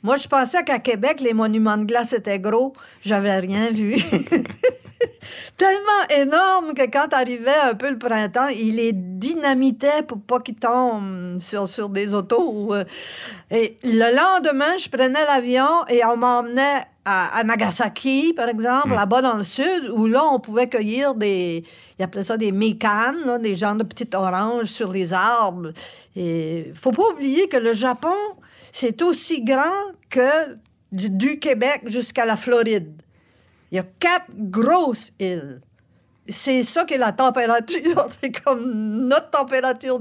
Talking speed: 155 wpm